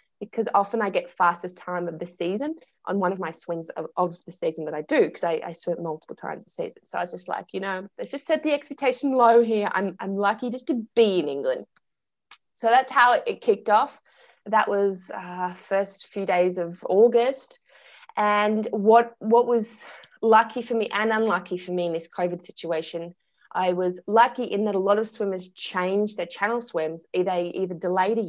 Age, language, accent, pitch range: 20-39, English, Australian, 180-225 Hz